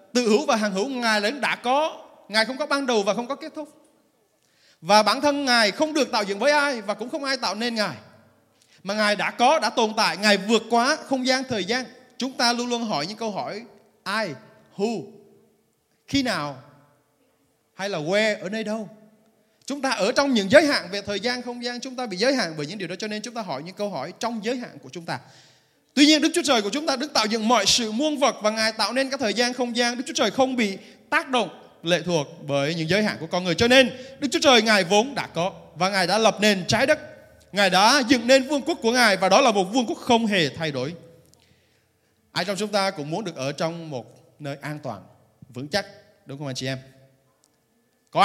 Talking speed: 245 wpm